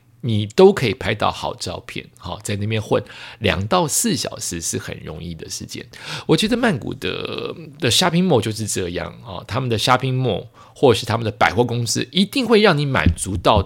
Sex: male